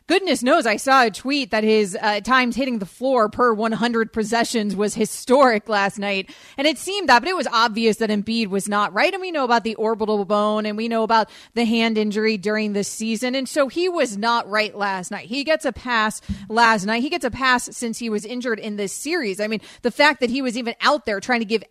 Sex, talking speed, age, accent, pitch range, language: female, 245 wpm, 30-49, American, 215-270 Hz, English